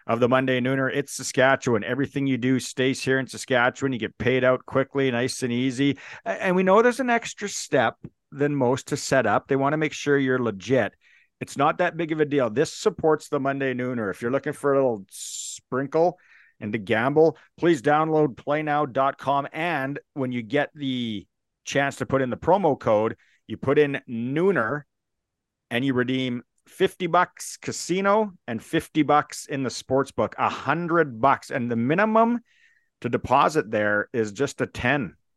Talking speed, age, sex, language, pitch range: 180 wpm, 50-69, male, English, 125-150 Hz